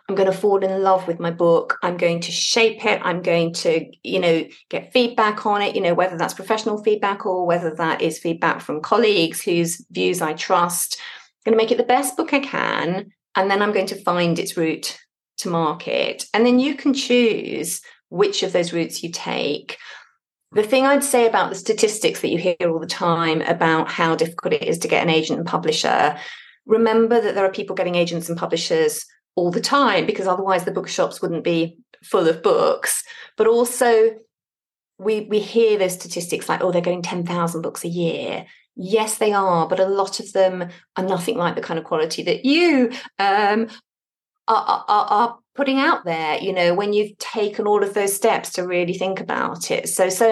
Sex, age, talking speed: female, 30-49, 205 wpm